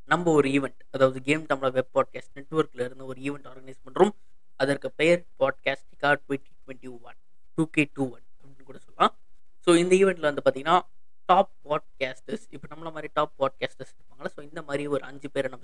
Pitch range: 135-165 Hz